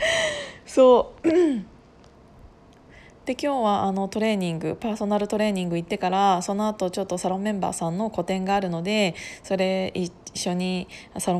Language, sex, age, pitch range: Japanese, female, 20-39, 180-230 Hz